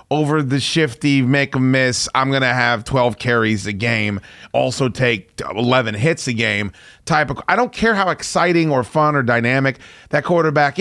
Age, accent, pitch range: 30-49, American, 120-165 Hz